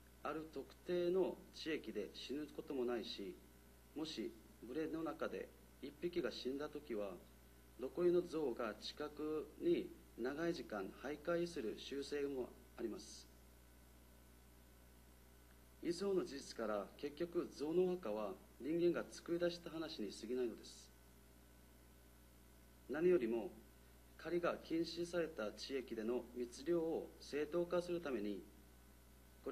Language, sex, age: Japanese, male, 40-59